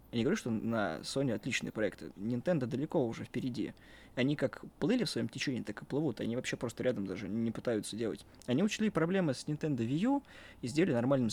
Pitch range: 120-150 Hz